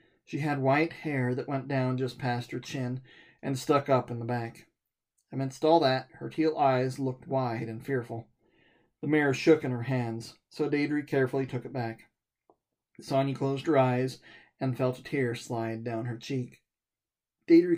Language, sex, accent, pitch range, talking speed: English, male, American, 120-140 Hz, 175 wpm